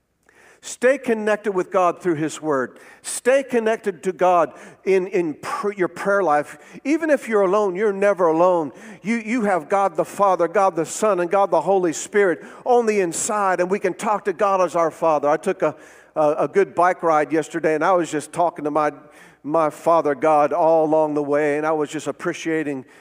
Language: English